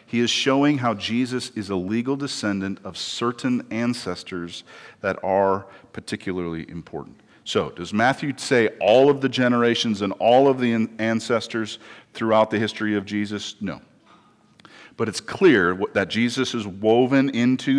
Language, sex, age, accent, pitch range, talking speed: English, male, 40-59, American, 105-130 Hz, 145 wpm